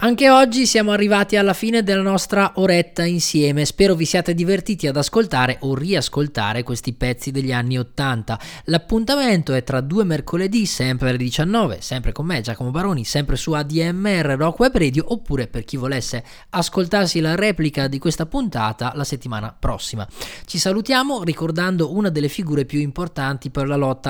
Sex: male